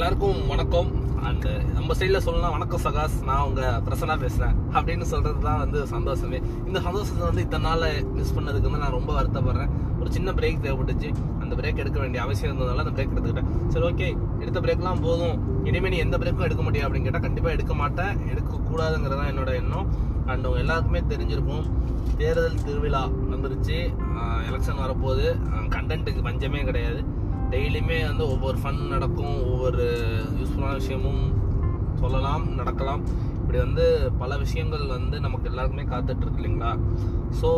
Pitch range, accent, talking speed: 95-125 Hz, native, 105 wpm